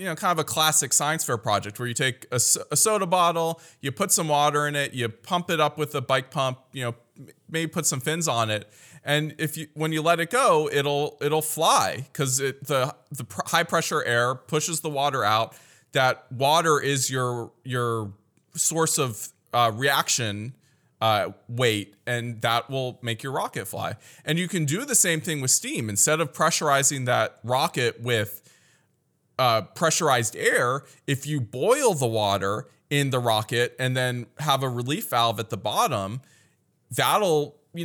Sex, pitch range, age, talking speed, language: male, 120-155 Hz, 20-39, 185 wpm, English